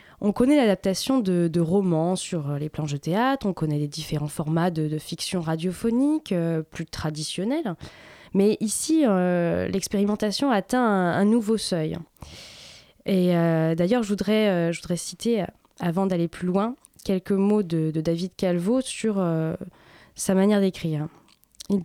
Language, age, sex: French, 20-39, female